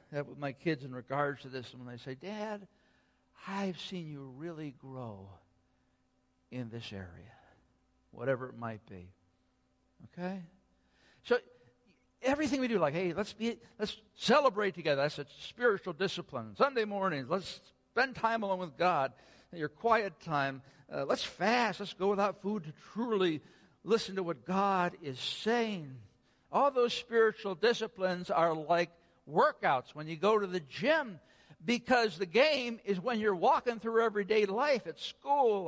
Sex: male